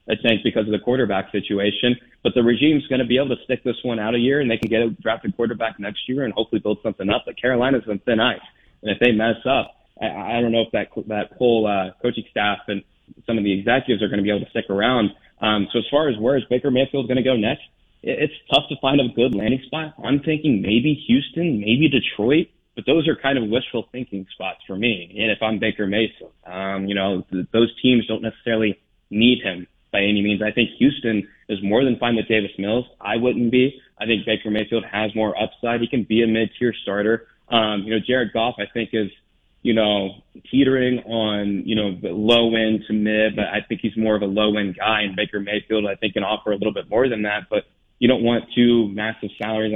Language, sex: English, male